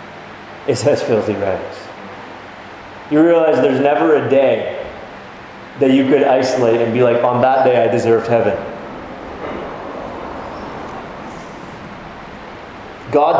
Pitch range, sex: 120-155 Hz, male